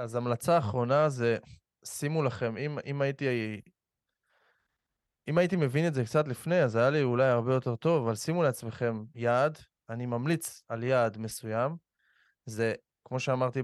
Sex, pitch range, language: male, 120-155 Hz, Hebrew